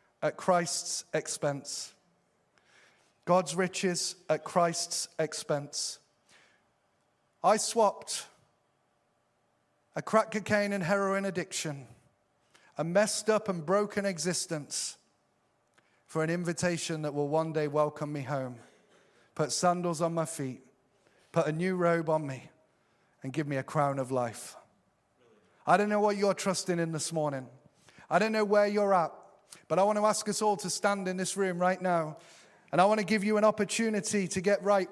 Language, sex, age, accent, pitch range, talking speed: English, male, 30-49, British, 160-210 Hz, 155 wpm